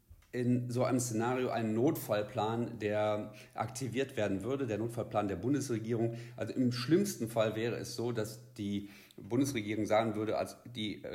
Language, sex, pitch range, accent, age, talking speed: German, male, 105-125 Hz, German, 50-69, 150 wpm